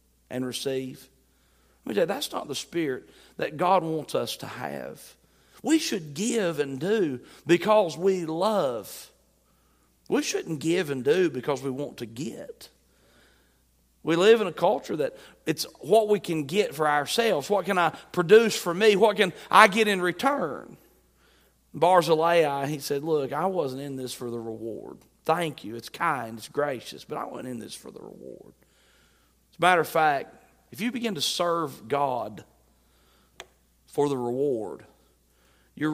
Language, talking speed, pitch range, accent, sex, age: English, 160 wpm, 125-180 Hz, American, male, 40-59